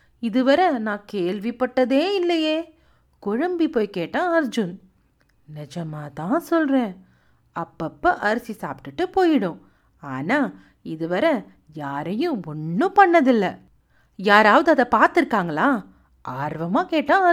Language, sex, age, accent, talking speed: Tamil, female, 40-59, native, 85 wpm